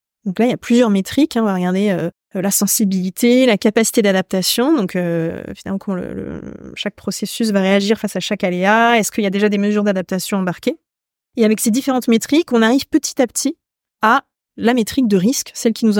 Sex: female